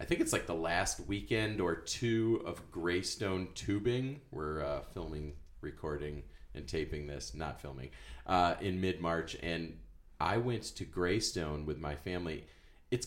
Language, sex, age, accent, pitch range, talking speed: English, male, 30-49, American, 80-105 Hz, 150 wpm